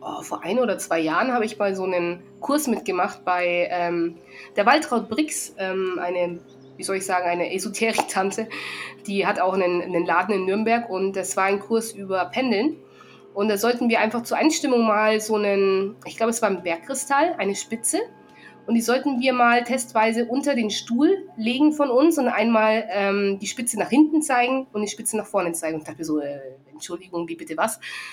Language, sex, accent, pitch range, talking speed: German, female, German, 185-240 Hz, 205 wpm